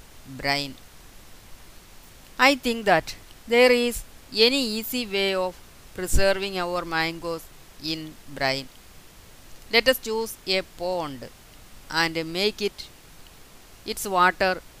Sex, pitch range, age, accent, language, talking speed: female, 150-195 Hz, 20-39, native, Malayalam, 100 wpm